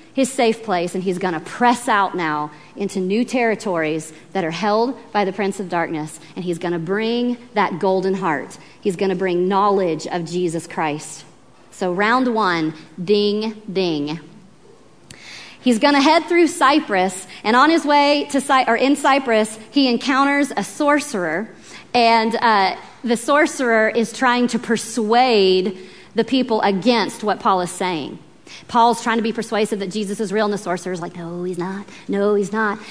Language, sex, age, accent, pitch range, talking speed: English, female, 40-59, American, 190-245 Hz, 165 wpm